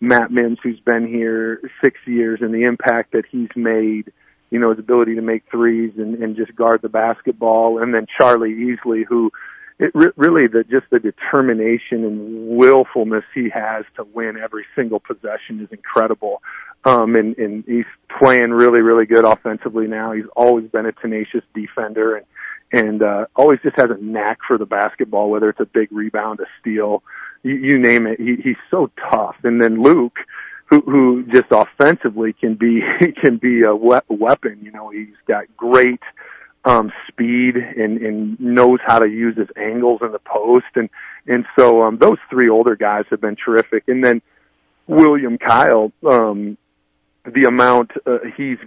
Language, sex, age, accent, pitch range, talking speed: English, male, 40-59, American, 110-120 Hz, 170 wpm